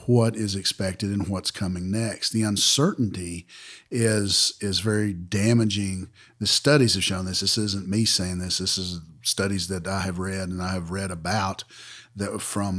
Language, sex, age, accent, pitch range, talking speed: English, male, 50-69, American, 100-125 Hz, 175 wpm